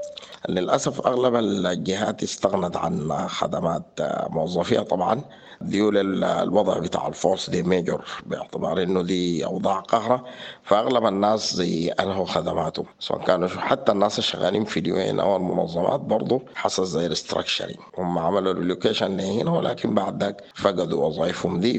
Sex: male